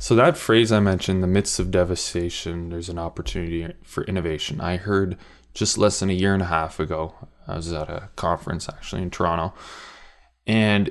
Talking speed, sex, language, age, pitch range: 185 wpm, male, English, 20-39, 85-110 Hz